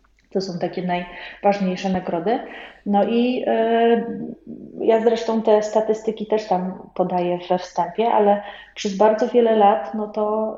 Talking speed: 125 wpm